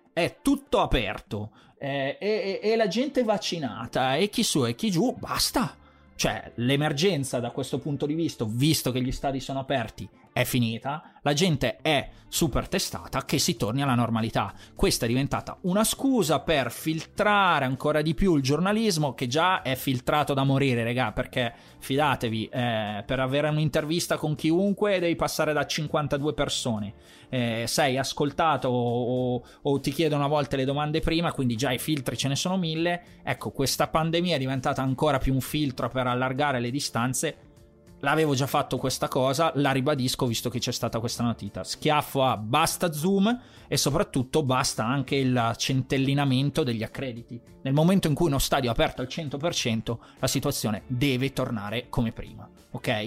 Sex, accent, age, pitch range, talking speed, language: male, native, 30-49, 125-150 Hz, 170 wpm, Italian